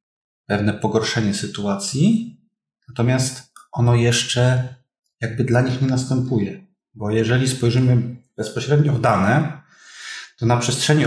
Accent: native